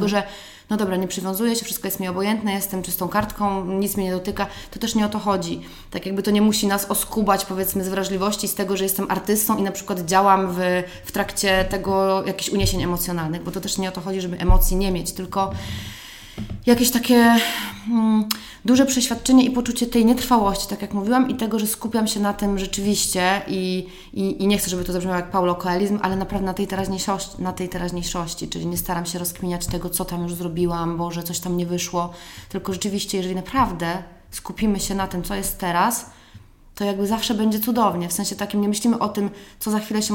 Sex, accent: female, native